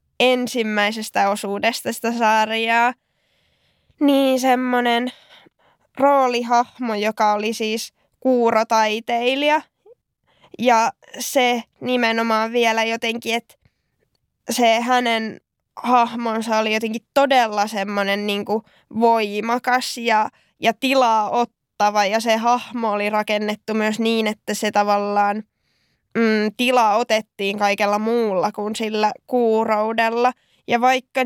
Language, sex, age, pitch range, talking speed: Finnish, female, 10-29, 215-245 Hz, 95 wpm